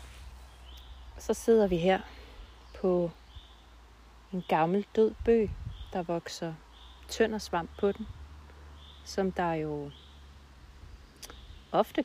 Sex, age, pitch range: female, 30-49, 170-215 Hz